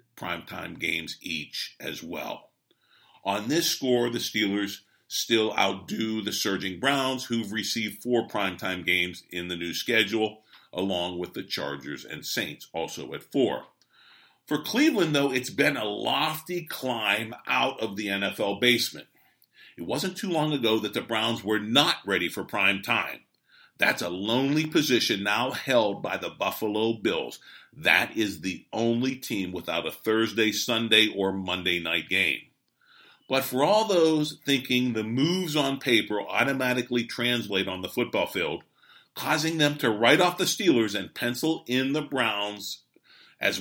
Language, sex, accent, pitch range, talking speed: English, male, American, 105-135 Hz, 150 wpm